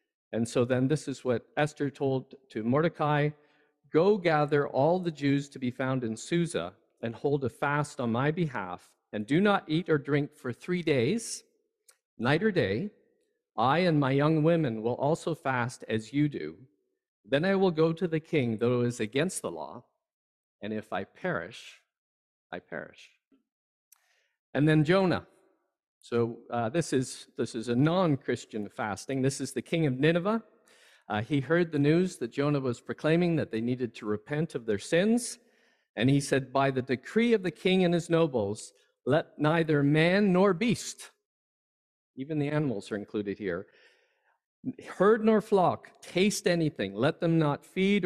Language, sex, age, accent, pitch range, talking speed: English, male, 50-69, American, 125-175 Hz, 170 wpm